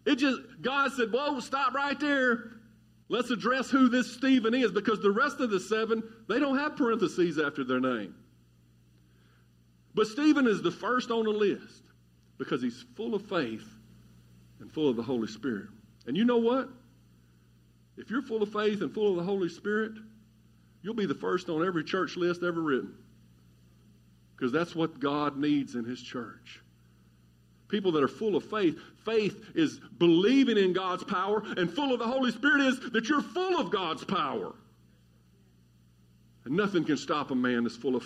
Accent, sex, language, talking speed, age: American, male, English, 180 wpm, 50-69